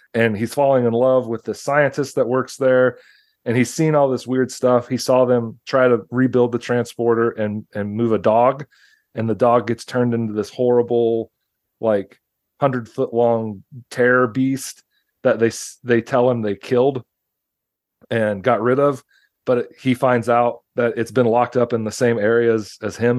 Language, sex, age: English, male, 30-49